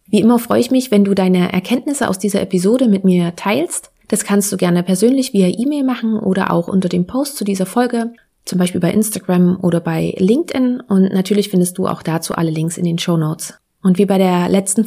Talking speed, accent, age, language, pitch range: 220 wpm, German, 30-49, German, 185-225 Hz